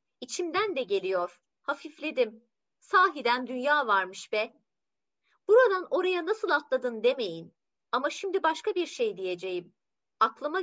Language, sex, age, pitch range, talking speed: Turkish, female, 30-49, 210-340 Hz, 115 wpm